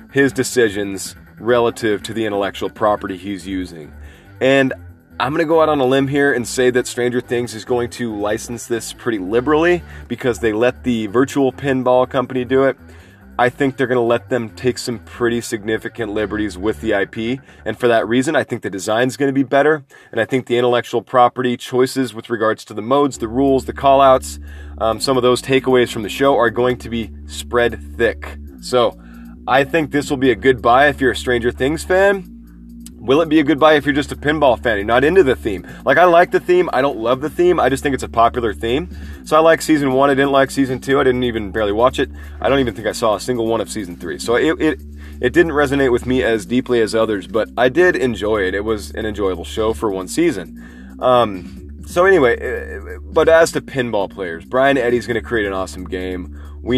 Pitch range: 100-135 Hz